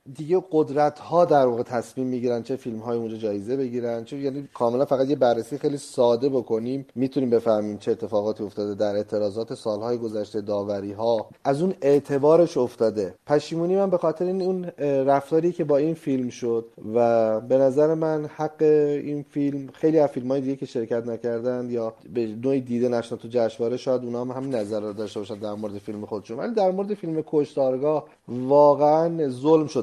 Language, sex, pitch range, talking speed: Persian, male, 115-145 Hz, 170 wpm